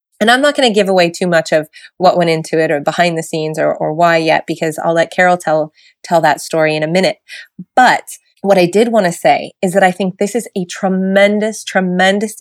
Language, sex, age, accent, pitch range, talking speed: English, female, 30-49, American, 160-195 Hz, 235 wpm